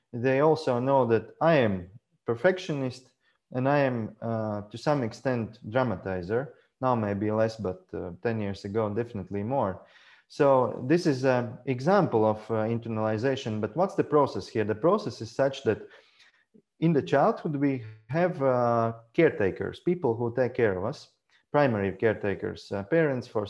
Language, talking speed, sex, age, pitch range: English, 155 wpm, male, 30-49, 110-145 Hz